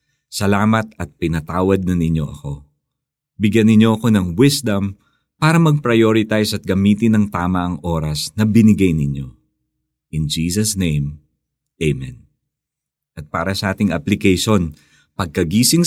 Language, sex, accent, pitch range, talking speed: Filipino, male, native, 85-130 Hz, 120 wpm